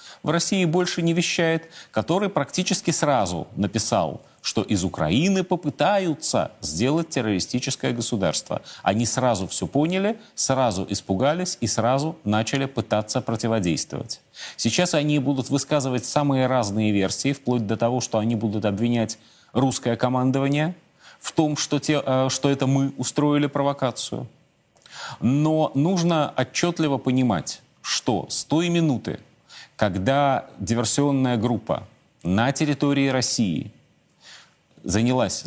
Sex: male